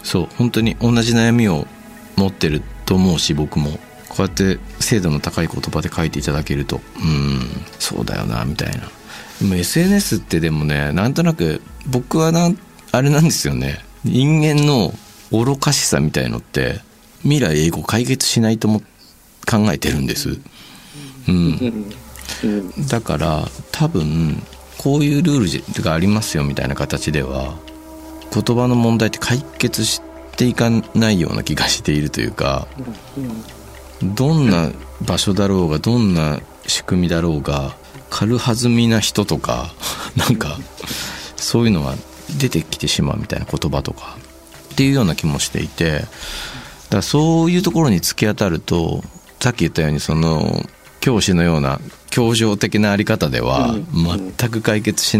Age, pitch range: 50-69, 75-120 Hz